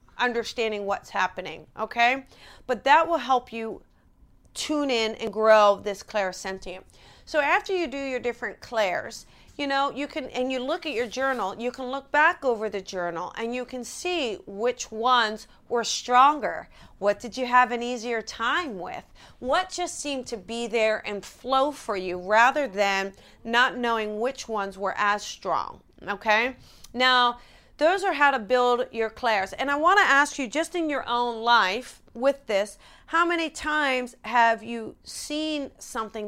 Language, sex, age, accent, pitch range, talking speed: English, female, 40-59, American, 220-270 Hz, 170 wpm